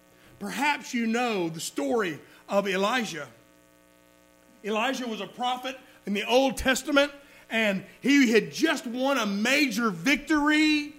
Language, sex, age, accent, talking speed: English, male, 50-69, American, 125 wpm